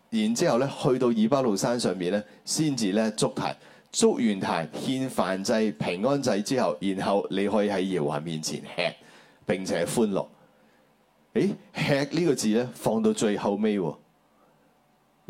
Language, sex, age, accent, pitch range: Chinese, male, 30-49, native, 75-110 Hz